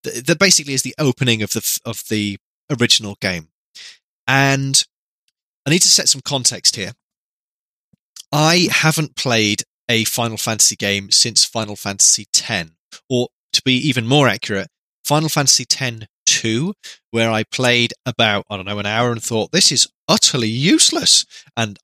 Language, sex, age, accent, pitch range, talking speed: English, male, 20-39, British, 105-140 Hz, 155 wpm